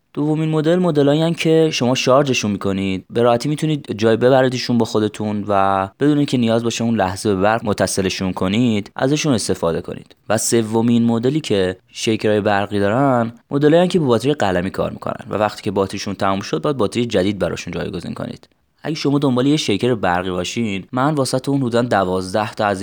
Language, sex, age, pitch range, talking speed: Persian, male, 20-39, 100-130 Hz, 175 wpm